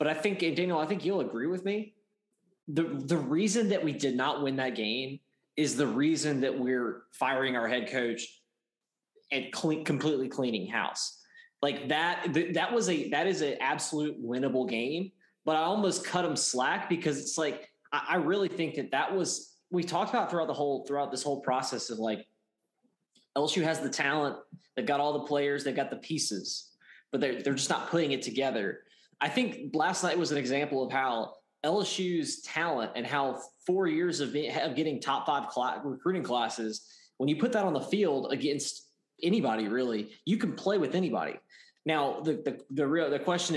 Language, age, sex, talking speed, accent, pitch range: English, 20-39, male, 190 wpm, American, 130-175 Hz